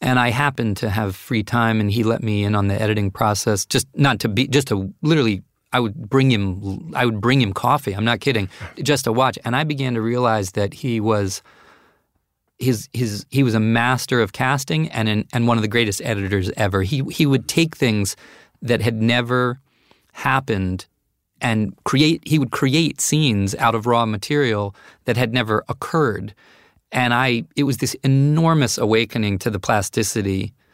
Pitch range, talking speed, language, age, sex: 105-125 Hz, 185 wpm, English, 30-49, male